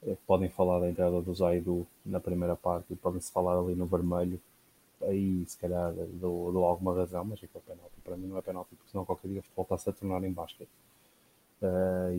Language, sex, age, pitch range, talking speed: Portuguese, male, 20-39, 90-95 Hz, 200 wpm